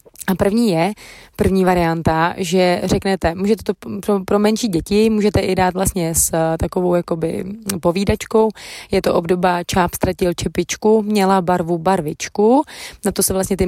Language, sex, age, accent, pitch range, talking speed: Czech, female, 20-39, native, 170-200 Hz, 150 wpm